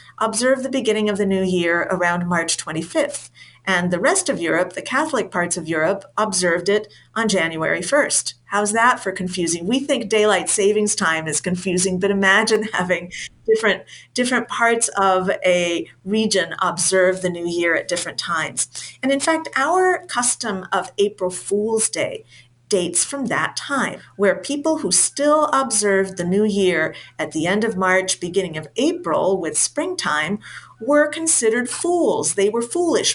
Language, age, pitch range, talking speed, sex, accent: English, 40-59, 170-225 Hz, 160 wpm, female, American